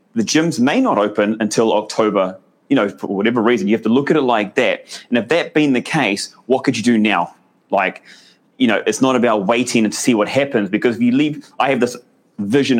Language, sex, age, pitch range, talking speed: English, male, 30-49, 105-125 Hz, 240 wpm